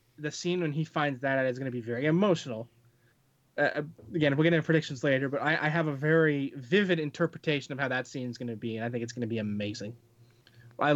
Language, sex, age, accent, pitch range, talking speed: English, male, 20-39, American, 120-155 Hz, 245 wpm